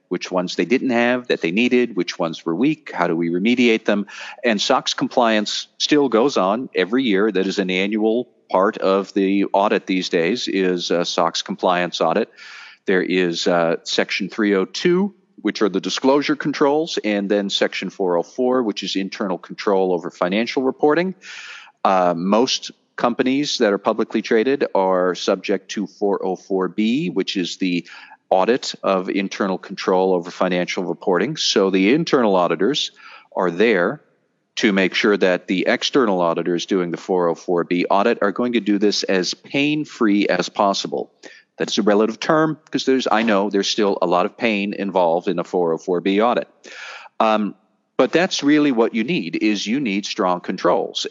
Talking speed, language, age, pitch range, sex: 160 wpm, English, 40-59, 95-125 Hz, male